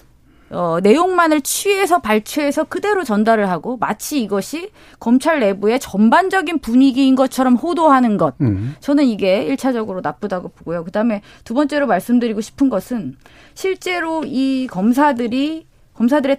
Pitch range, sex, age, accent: 205-295 Hz, female, 30-49, native